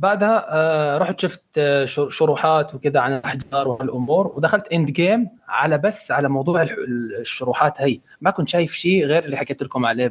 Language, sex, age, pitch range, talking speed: Arabic, male, 20-39, 130-155 Hz, 155 wpm